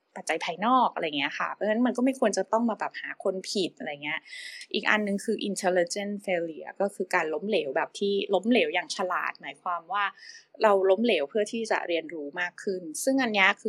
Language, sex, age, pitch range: English, female, 20-39, 185-240 Hz